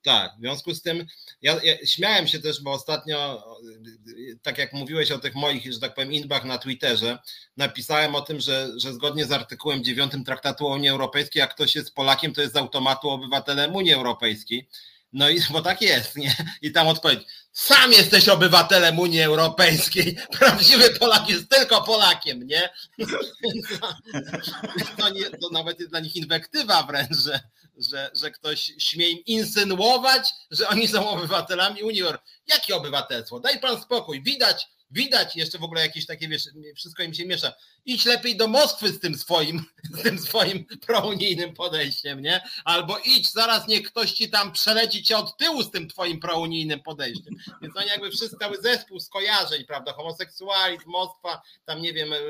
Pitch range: 145-195 Hz